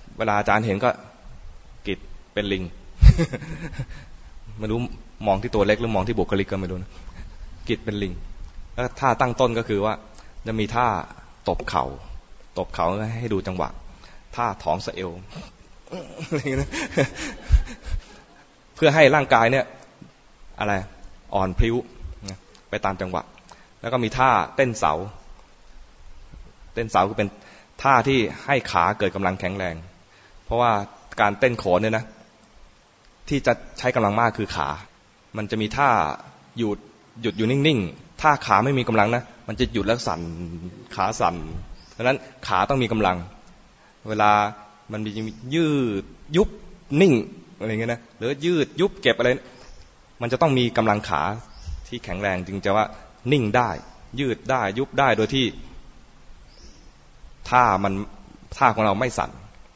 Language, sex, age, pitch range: English, male, 20-39, 95-125 Hz